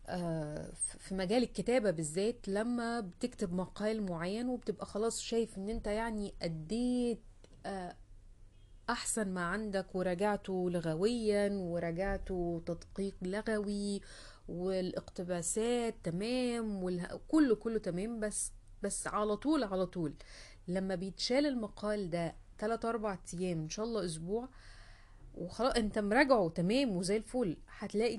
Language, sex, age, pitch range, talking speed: Arabic, female, 30-49, 170-215 Hz, 110 wpm